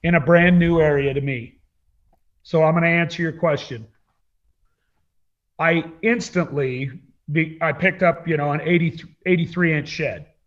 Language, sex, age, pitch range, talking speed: English, male, 40-59, 135-180 Hz, 155 wpm